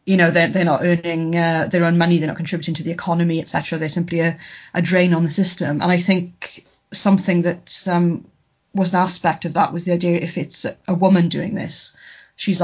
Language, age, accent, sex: English, 30-49, British, female